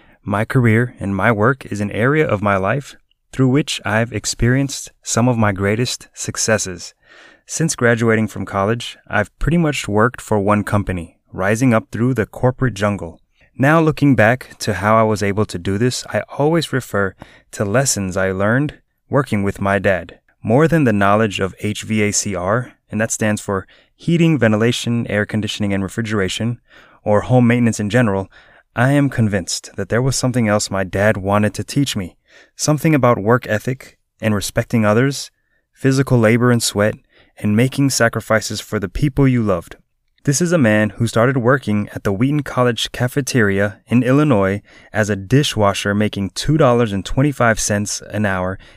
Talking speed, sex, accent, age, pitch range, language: 165 wpm, male, American, 20-39, 105-130 Hz, English